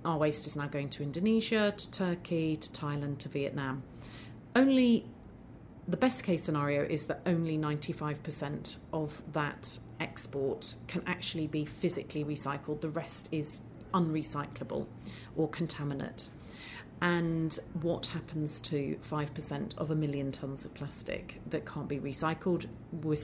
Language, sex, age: English, female, 30-49